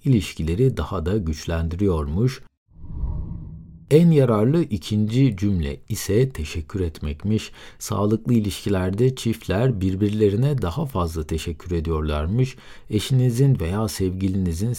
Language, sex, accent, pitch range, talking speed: Turkish, male, native, 85-130 Hz, 90 wpm